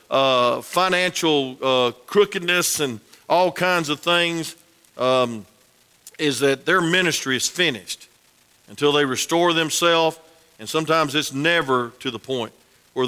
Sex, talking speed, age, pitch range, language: male, 130 wpm, 50-69, 130-195 Hz, English